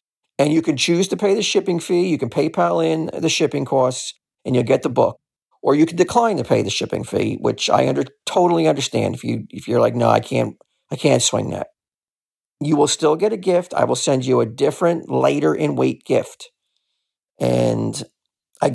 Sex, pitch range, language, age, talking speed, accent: male, 120-170 Hz, English, 40-59, 210 wpm, American